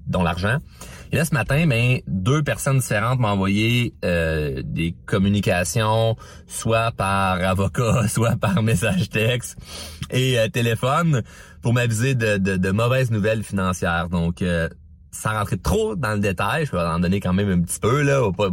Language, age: French, 30-49